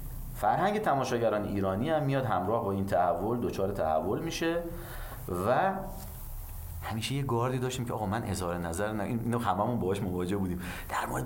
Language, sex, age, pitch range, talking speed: Persian, male, 30-49, 80-105 Hz, 155 wpm